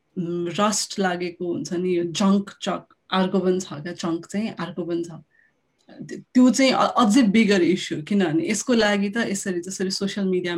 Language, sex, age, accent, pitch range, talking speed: English, female, 30-49, Indian, 185-235 Hz, 95 wpm